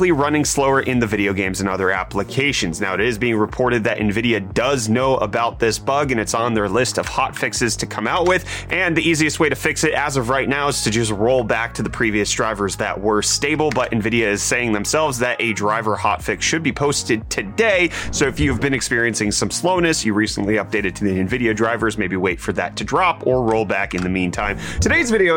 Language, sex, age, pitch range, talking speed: English, male, 30-49, 110-165 Hz, 225 wpm